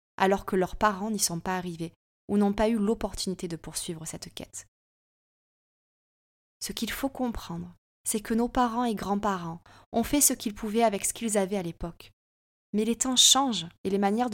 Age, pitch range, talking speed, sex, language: 20-39, 175-235 Hz, 190 wpm, female, French